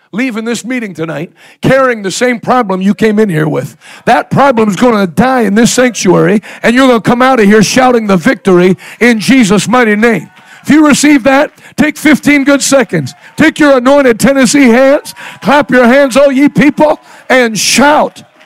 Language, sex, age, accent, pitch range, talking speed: English, male, 60-79, American, 185-250 Hz, 190 wpm